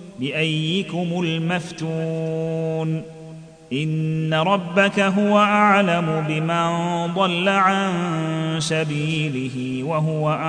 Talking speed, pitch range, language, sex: 65 wpm, 160-195 Hz, Arabic, male